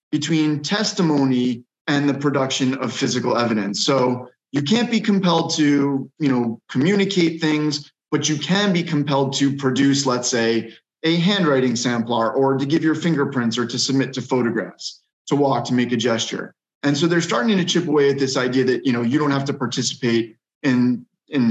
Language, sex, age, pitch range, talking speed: English, male, 20-39, 125-155 Hz, 185 wpm